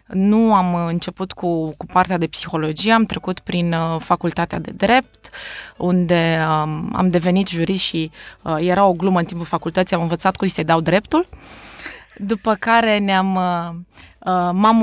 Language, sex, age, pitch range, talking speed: Romanian, female, 20-39, 175-210 Hz, 160 wpm